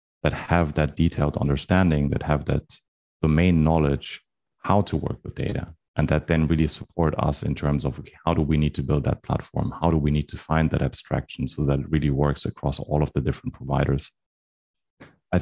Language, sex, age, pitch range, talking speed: English, male, 30-49, 75-90 Hz, 205 wpm